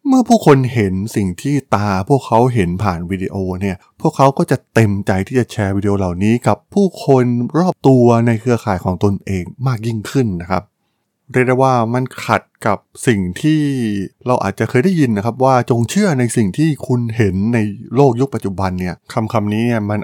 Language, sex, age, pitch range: Thai, male, 20-39, 95-125 Hz